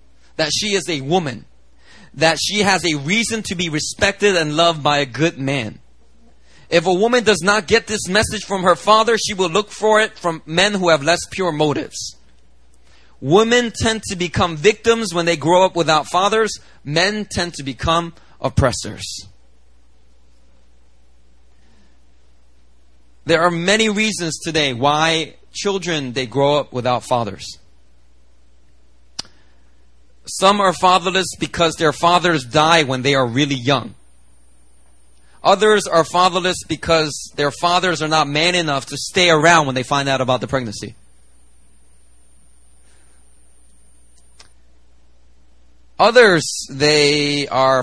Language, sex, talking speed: English, male, 130 wpm